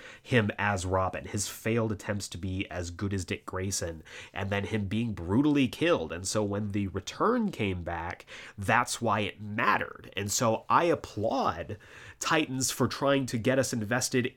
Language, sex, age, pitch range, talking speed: English, male, 30-49, 100-125 Hz, 170 wpm